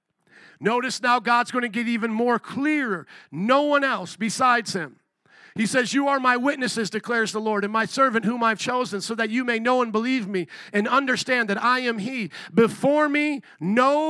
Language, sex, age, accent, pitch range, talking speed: English, male, 50-69, American, 210-255 Hz, 195 wpm